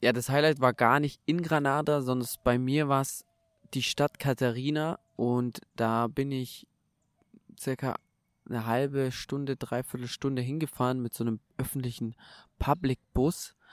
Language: German